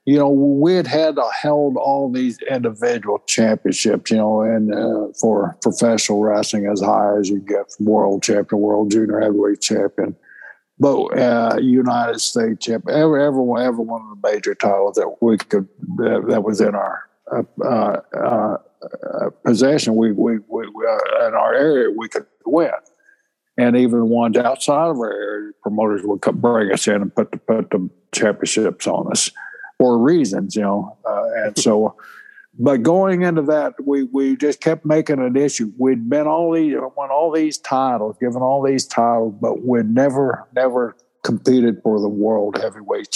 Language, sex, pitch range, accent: English, male, 110-155 Hz, American